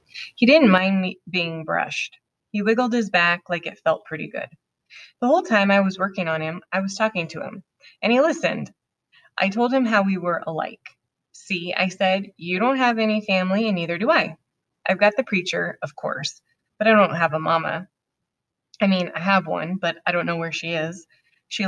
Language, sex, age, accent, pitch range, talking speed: English, female, 20-39, American, 170-210 Hz, 210 wpm